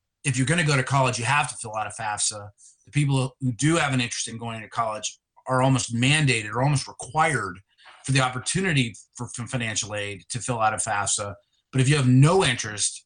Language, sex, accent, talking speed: English, male, American, 220 wpm